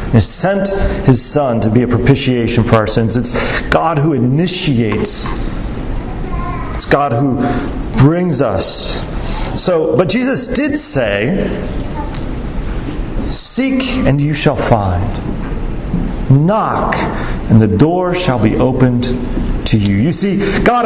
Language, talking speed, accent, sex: English, 115 wpm, American, male